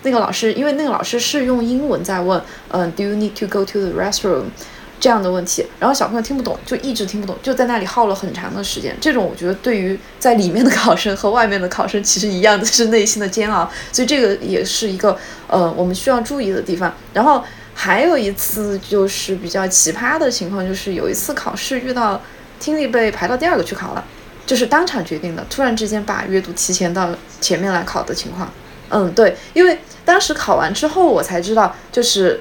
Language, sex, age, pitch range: Chinese, female, 20-39, 190-245 Hz